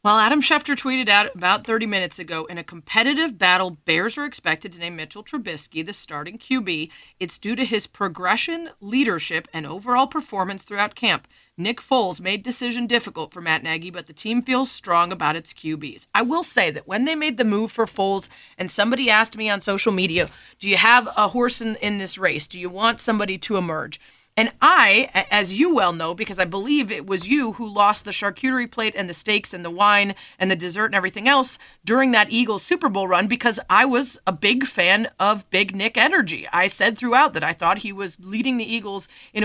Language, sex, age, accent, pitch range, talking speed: English, female, 30-49, American, 185-245 Hz, 215 wpm